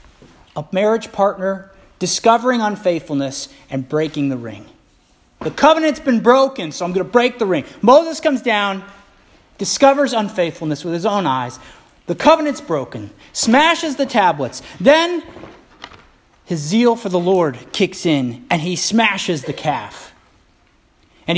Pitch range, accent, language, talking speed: 180-275 Hz, American, English, 140 wpm